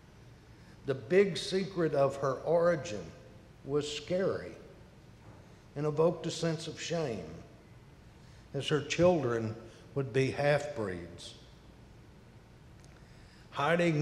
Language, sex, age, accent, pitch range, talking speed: English, male, 60-79, American, 115-160 Hz, 90 wpm